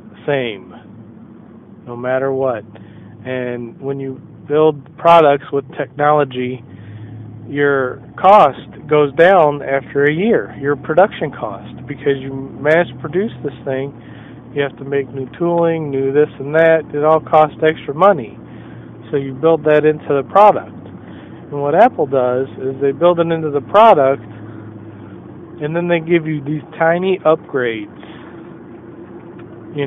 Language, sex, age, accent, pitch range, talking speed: English, male, 40-59, American, 130-165 Hz, 140 wpm